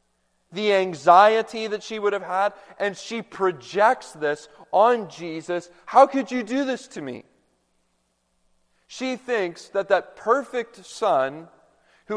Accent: American